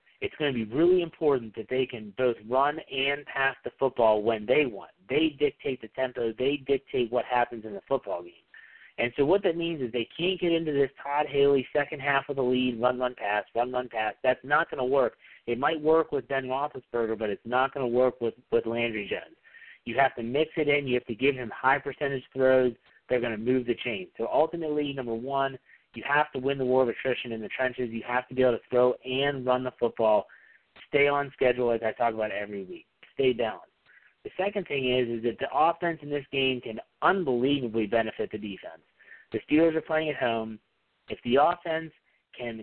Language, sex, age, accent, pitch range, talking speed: English, male, 40-59, American, 120-150 Hz, 220 wpm